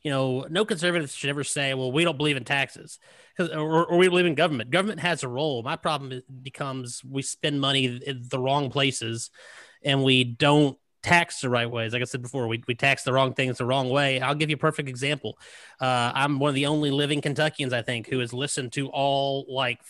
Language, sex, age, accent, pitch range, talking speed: English, male, 30-49, American, 130-165 Hz, 225 wpm